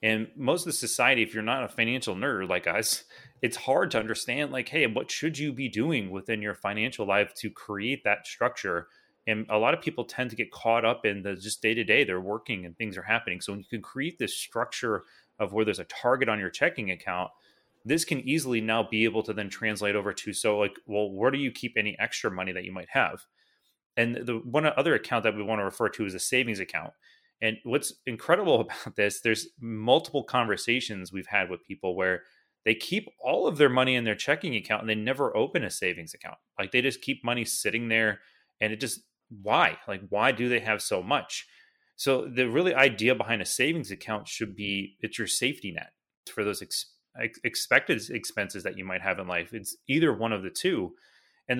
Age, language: 30-49, English